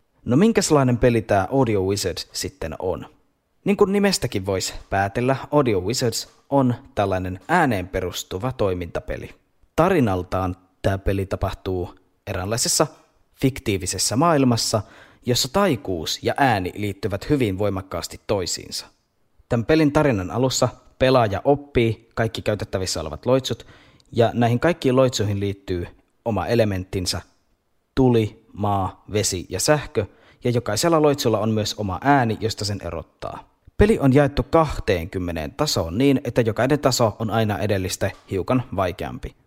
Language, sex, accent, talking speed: Finnish, male, native, 125 wpm